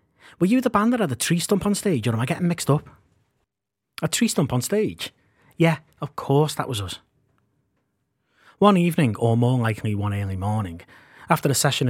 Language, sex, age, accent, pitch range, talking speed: English, male, 30-49, British, 105-135 Hz, 195 wpm